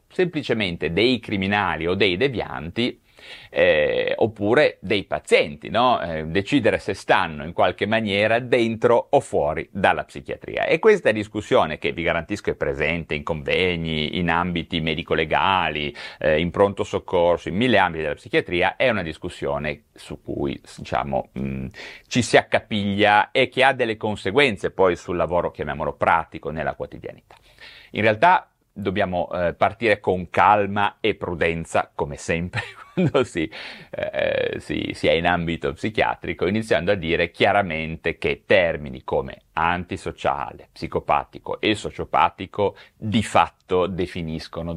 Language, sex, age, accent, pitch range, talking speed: Italian, male, 30-49, native, 85-115 Hz, 130 wpm